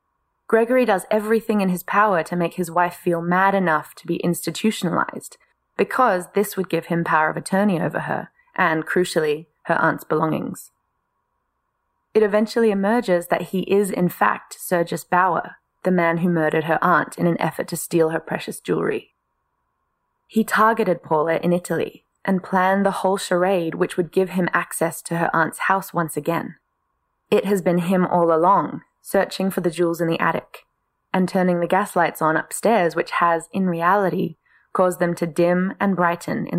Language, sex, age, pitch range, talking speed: English, female, 20-39, 170-205 Hz, 175 wpm